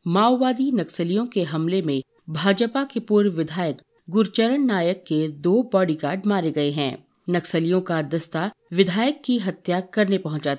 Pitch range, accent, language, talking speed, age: 160-220 Hz, native, Hindi, 140 wpm, 50-69